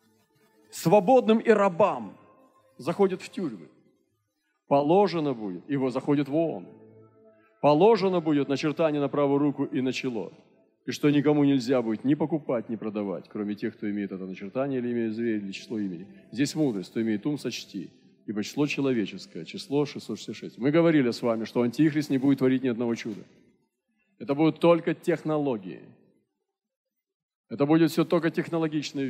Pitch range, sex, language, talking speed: 115-155 Hz, male, Russian, 155 wpm